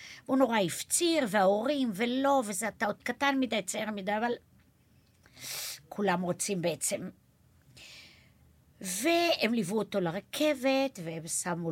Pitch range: 175-245 Hz